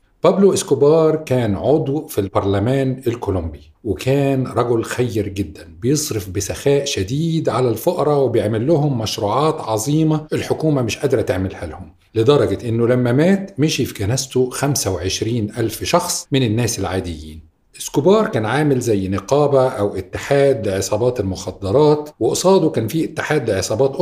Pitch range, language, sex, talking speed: 100-140 Hz, Arabic, male, 125 wpm